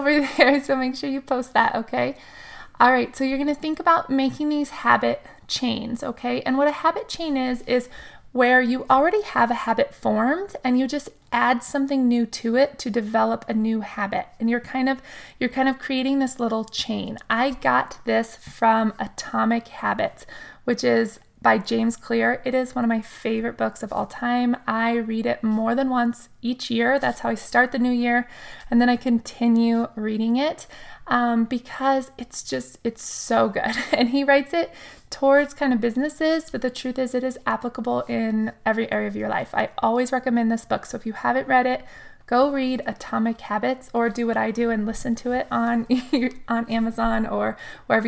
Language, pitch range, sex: English, 230-265 Hz, female